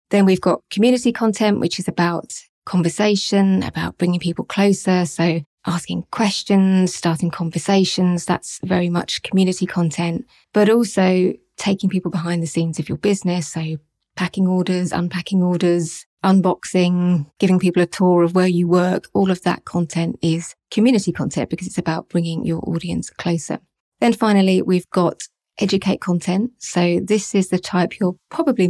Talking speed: 155 wpm